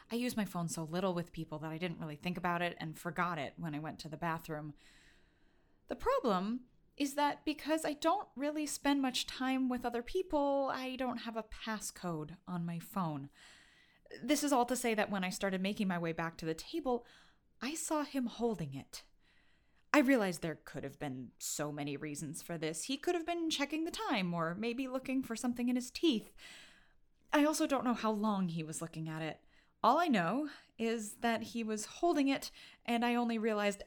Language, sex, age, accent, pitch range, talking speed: English, female, 30-49, American, 170-250 Hz, 205 wpm